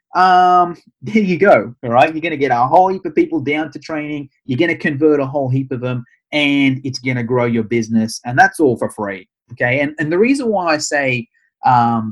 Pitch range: 115-150 Hz